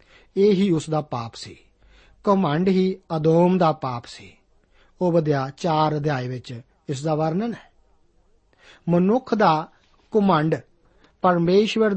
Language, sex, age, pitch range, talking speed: Punjabi, male, 50-69, 150-185 Hz, 120 wpm